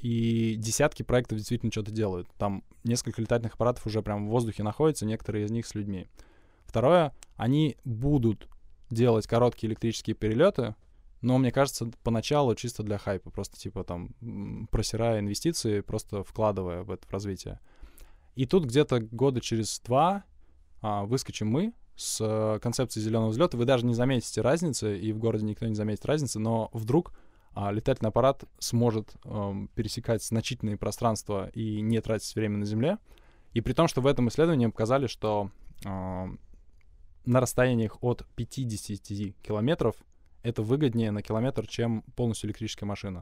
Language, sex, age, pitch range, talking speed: Russian, male, 20-39, 105-120 Hz, 150 wpm